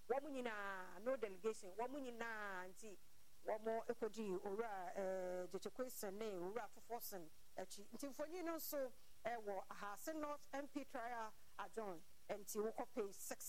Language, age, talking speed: English, 50-69, 150 wpm